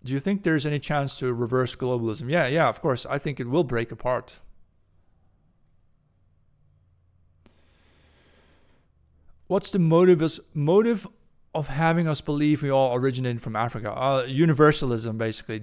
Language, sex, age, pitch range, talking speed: English, male, 40-59, 120-150 Hz, 130 wpm